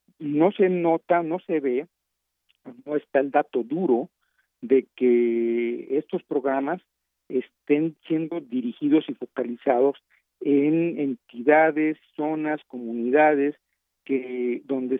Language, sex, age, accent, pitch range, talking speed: Spanish, male, 50-69, Mexican, 120-155 Hz, 105 wpm